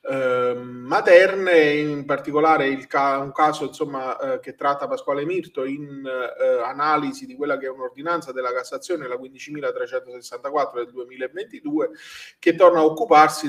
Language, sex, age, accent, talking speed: Italian, male, 30-49, native, 140 wpm